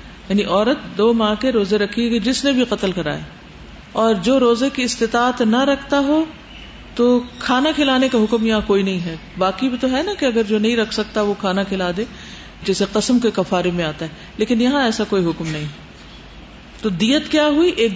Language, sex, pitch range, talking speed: Urdu, female, 200-270 Hz, 210 wpm